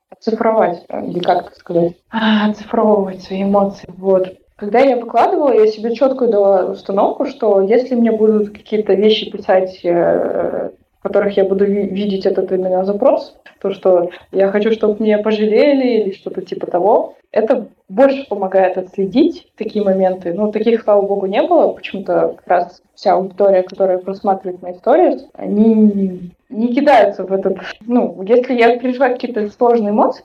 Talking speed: 150 wpm